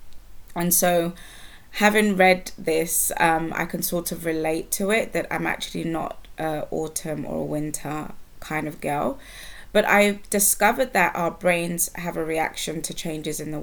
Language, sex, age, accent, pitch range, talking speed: English, female, 20-39, British, 150-180 Hz, 165 wpm